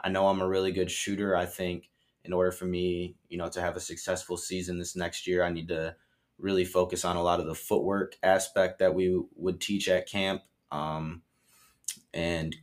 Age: 20-39